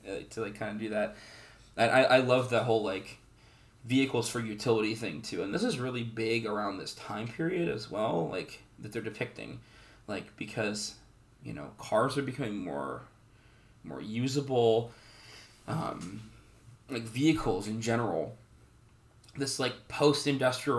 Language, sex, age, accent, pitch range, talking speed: English, male, 20-39, American, 110-120 Hz, 145 wpm